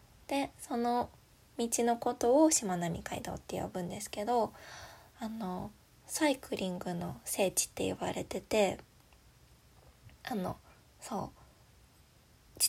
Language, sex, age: Japanese, female, 20-39